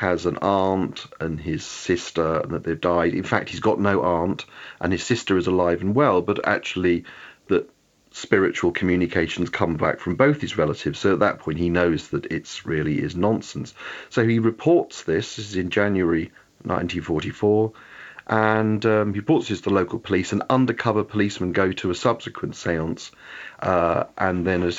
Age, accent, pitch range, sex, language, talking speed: 40-59, British, 90-110 Hz, male, English, 175 wpm